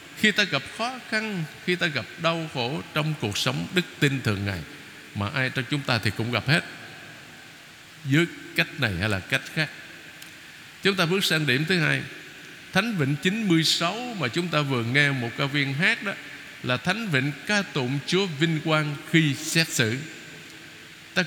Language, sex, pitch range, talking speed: Vietnamese, male, 145-195 Hz, 185 wpm